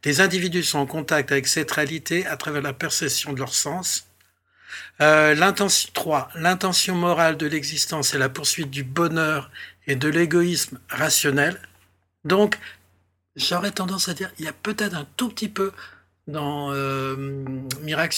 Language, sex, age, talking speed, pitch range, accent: French, male, 60-79, 155 wpm, 135-160 Hz, French